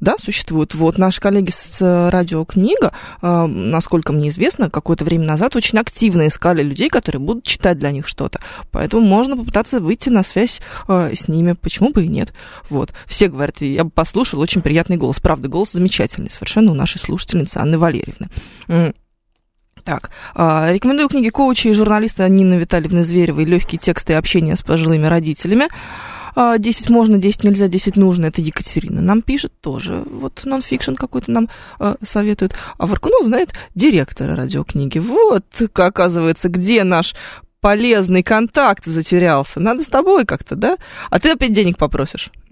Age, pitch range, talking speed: 20-39, 165-220 Hz, 160 wpm